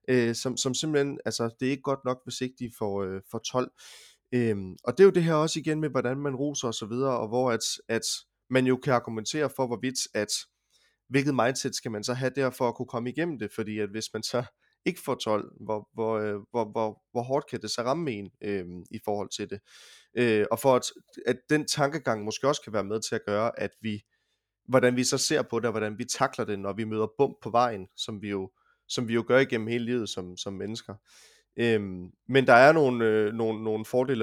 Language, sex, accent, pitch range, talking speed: Danish, male, native, 110-130 Hz, 235 wpm